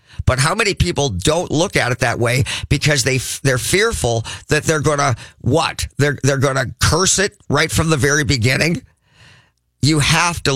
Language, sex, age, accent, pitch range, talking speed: English, male, 50-69, American, 120-160 Hz, 195 wpm